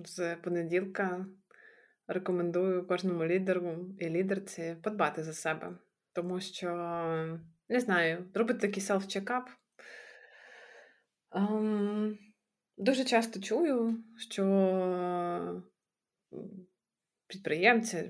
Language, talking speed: Ukrainian, 75 wpm